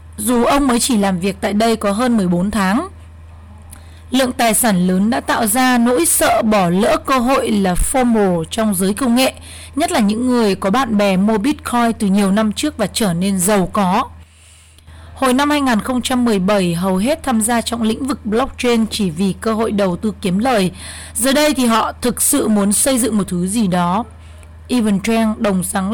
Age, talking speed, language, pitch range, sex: 20-39, 195 wpm, Vietnamese, 195-250 Hz, female